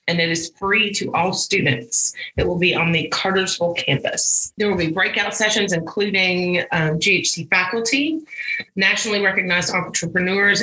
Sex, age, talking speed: female, 40-59, 145 wpm